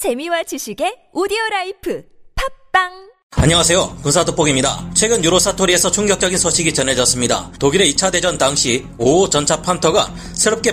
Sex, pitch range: male, 155-200 Hz